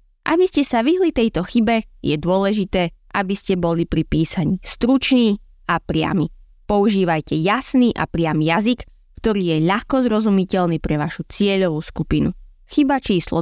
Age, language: 20-39, Slovak